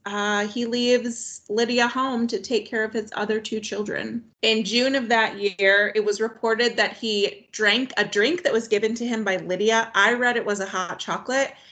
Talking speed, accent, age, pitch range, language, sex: 205 wpm, American, 30-49, 200-245 Hz, English, female